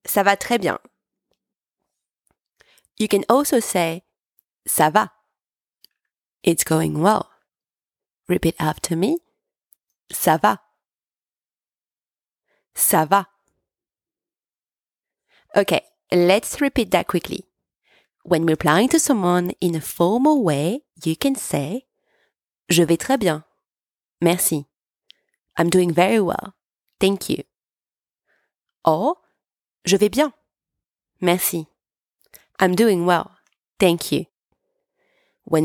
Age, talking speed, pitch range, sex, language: 30-49, 100 wpm, 170-245 Hz, female, English